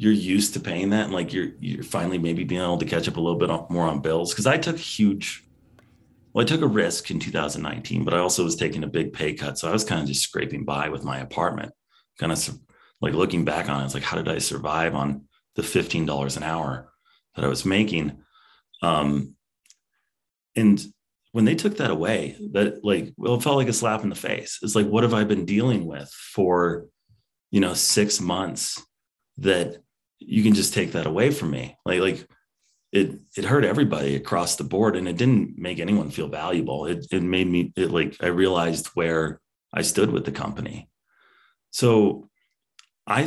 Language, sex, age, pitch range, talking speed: English, male, 30-49, 80-105 Hz, 205 wpm